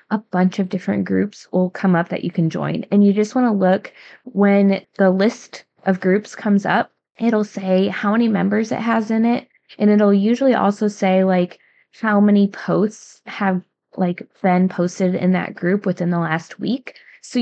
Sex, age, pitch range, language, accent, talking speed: female, 20-39, 180-205 Hz, English, American, 190 wpm